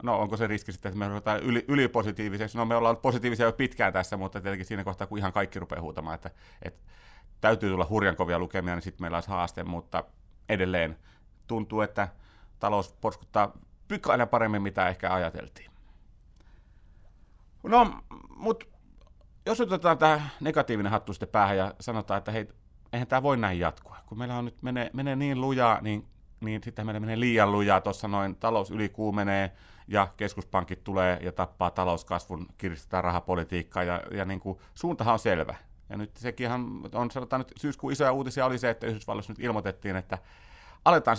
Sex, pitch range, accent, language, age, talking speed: male, 95-115 Hz, native, Finnish, 30-49, 170 wpm